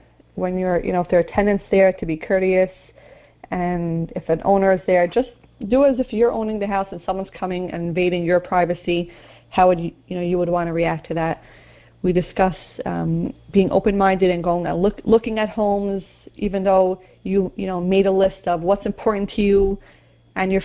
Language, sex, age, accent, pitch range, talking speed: English, female, 30-49, American, 180-205 Hz, 210 wpm